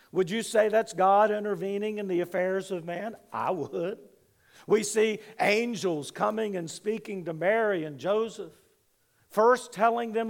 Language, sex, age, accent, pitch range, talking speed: English, male, 50-69, American, 190-225 Hz, 150 wpm